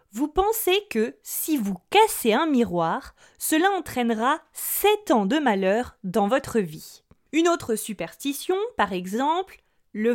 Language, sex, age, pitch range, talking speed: French, female, 20-39, 200-320 Hz, 135 wpm